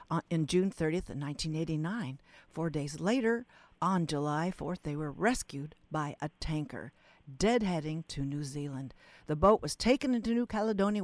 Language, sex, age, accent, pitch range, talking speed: English, female, 60-79, American, 155-215 Hz, 150 wpm